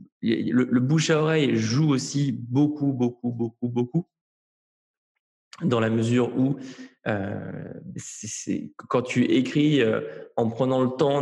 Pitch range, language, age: 115-140 Hz, French, 20-39